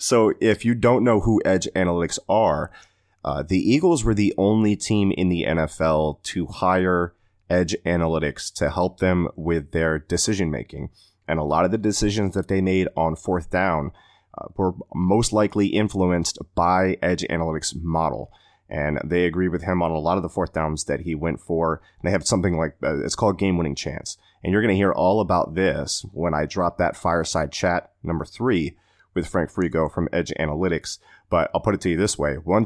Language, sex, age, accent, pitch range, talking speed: English, male, 30-49, American, 80-95 Hz, 200 wpm